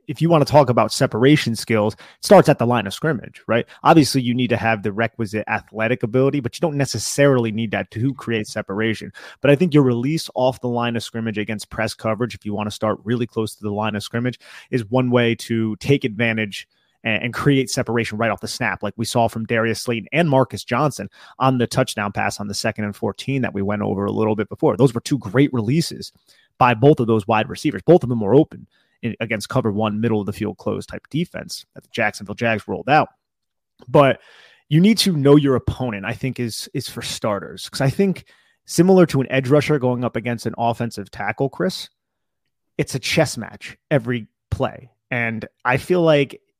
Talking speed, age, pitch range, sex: 215 wpm, 30-49, 110-135 Hz, male